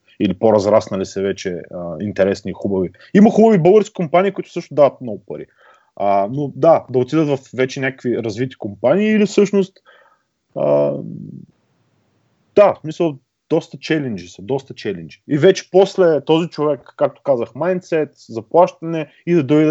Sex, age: male, 30-49